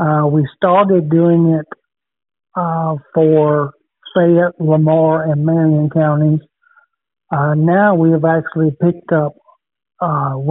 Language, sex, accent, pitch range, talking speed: English, male, American, 150-165 Hz, 110 wpm